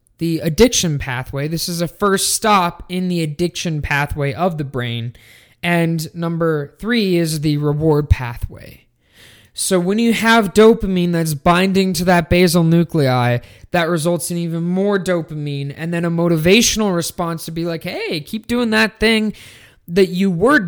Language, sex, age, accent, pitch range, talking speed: English, male, 20-39, American, 145-185 Hz, 160 wpm